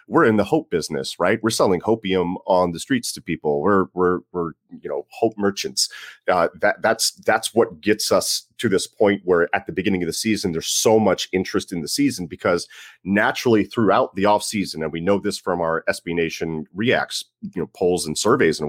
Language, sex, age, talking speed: English, male, 30-49, 210 wpm